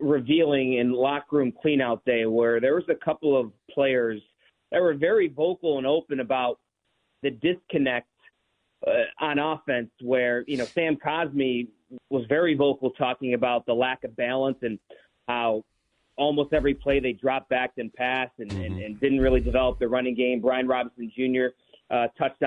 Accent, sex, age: American, male, 30-49